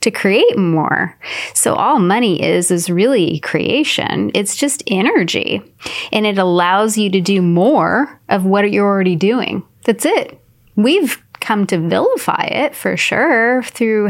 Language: English